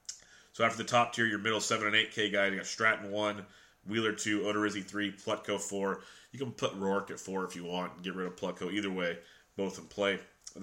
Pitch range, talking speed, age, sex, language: 95-105 Hz, 230 wpm, 30-49, male, English